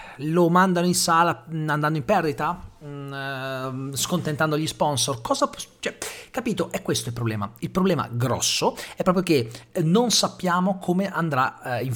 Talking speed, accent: 135 wpm, native